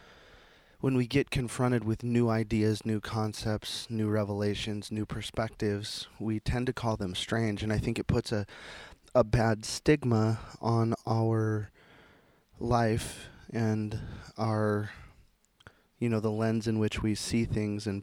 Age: 20-39